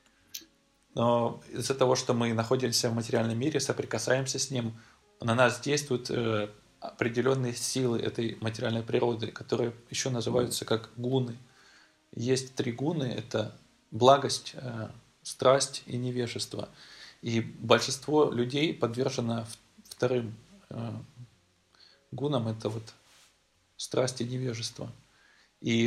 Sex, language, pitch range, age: male, Russian, 115-130 Hz, 20-39